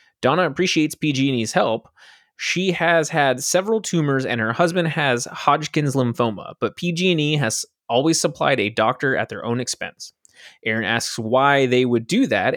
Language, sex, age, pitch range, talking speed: English, male, 20-39, 115-160 Hz, 160 wpm